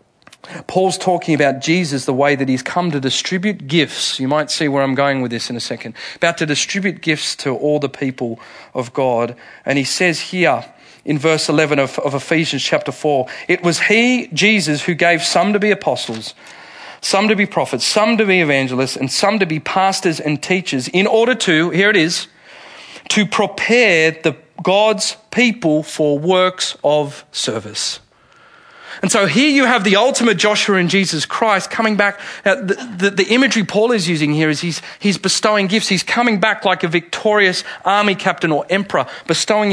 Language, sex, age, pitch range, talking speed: English, male, 40-59, 145-200 Hz, 185 wpm